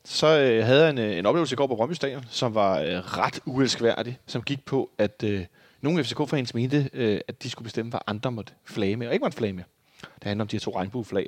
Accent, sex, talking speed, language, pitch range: native, male, 240 wpm, Danish, 100-130 Hz